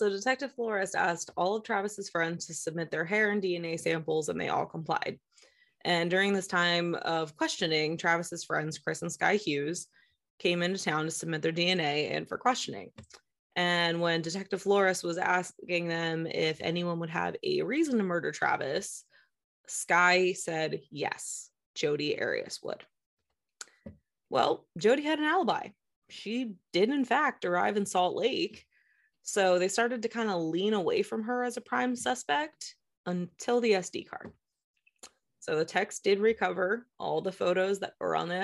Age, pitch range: 20-39, 170-225 Hz